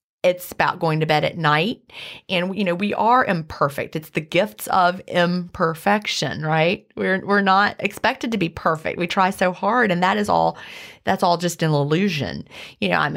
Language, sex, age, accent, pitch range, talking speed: English, female, 30-49, American, 160-210 Hz, 190 wpm